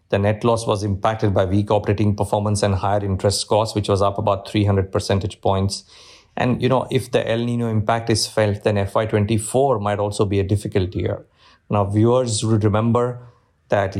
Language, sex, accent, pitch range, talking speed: English, male, Indian, 100-115 Hz, 185 wpm